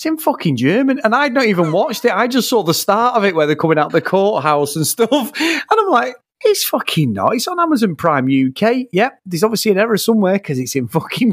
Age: 30-49